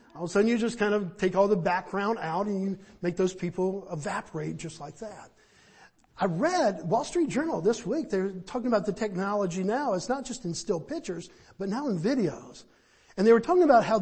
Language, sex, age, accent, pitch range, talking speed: English, male, 50-69, American, 185-240 Hz, 220 wpm